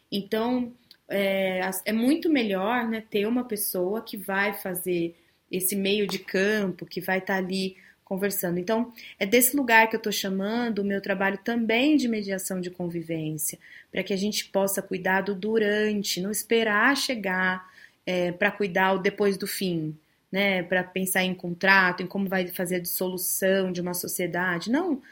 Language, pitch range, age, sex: Portuguese, 190-235 Hz, 20-39, female